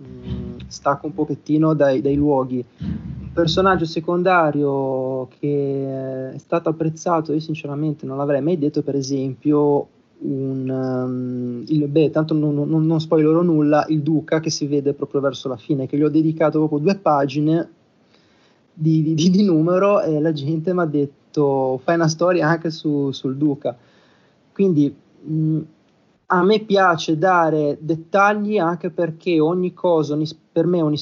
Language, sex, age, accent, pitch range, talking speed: Italian, male, 30-49, native, 140-160 Hz, 150 wpm